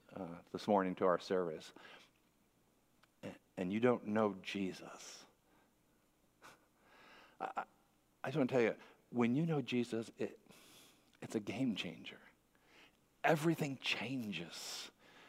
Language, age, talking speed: English, 50-69, 120 wpm